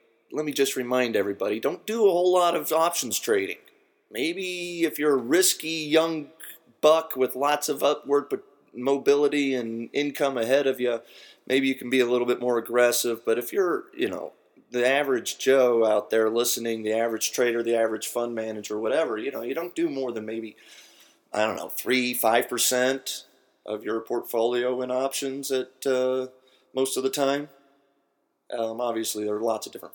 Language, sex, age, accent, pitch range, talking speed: English, male, 30-49, American, 115-145 Hz, 175 wpm